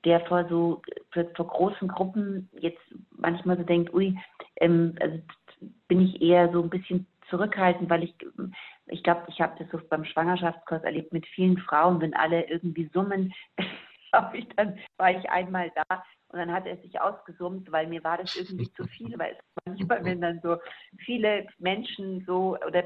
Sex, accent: female, German